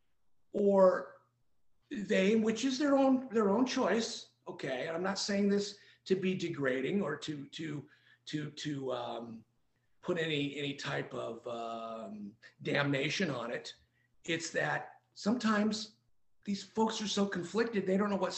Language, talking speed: English, 145 wpm